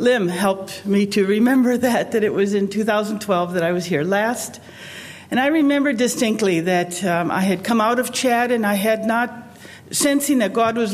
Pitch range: 175-215 Hz